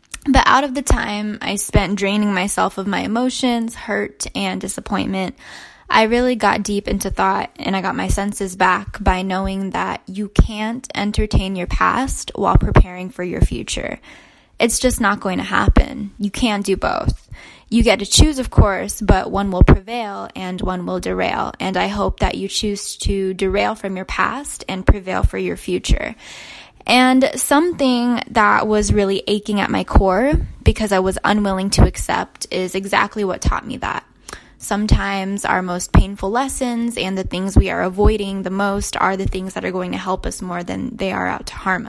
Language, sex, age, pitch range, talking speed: English, female, 10-29, 190-230 Hz, 185 wpm